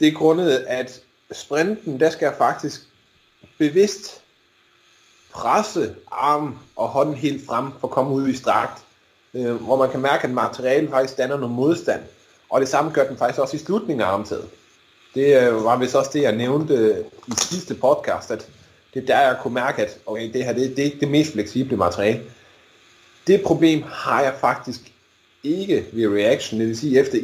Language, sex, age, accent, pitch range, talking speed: Danish, male, 30-49, native, 120-150 Hz, 190 wpm